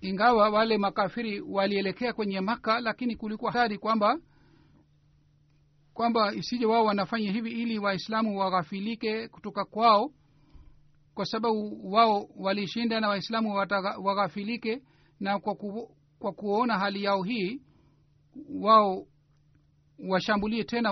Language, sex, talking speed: Swahili, male, 110 wpm